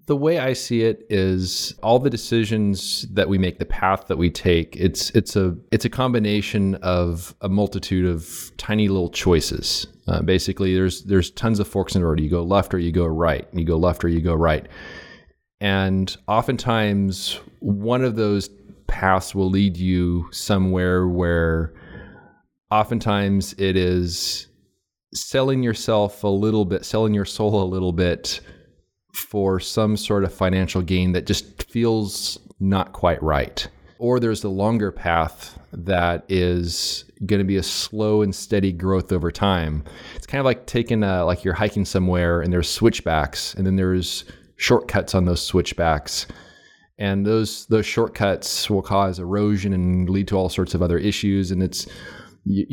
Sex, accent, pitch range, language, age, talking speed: male, American, 90-105 Hz, English, 30-49, 165 wpm